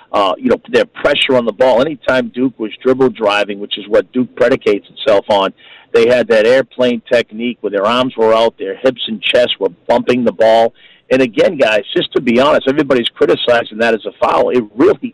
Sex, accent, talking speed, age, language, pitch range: male, American, 210 wpm, 50-69, English, 120-155 Hz